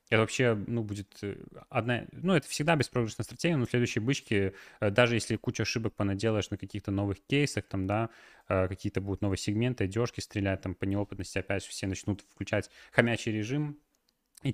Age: 20-39